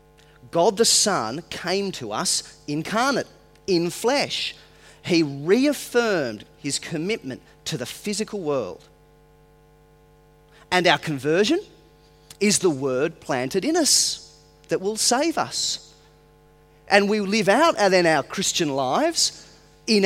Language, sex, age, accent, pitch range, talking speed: English, male, 30-49, Australian, 140-200 Hz, 115 wpm